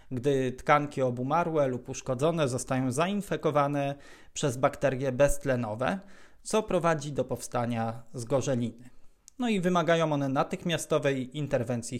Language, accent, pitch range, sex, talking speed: Polish, native, 130-170 Hz, male, 105 wpm